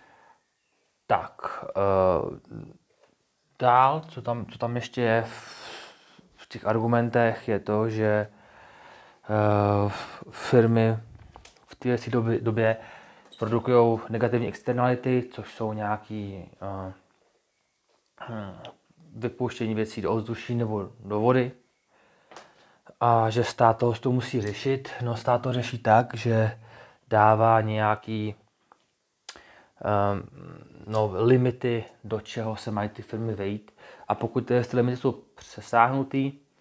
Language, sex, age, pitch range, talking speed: Czech, male, 20-39, 110-125 Hz, 110 wpm